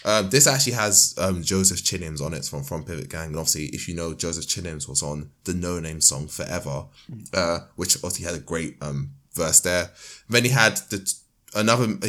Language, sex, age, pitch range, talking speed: English, male, 20-39, 85-110 Hz, 200 wpm